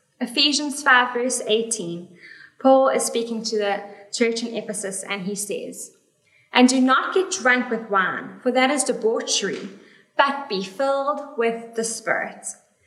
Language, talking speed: English, 150 wpm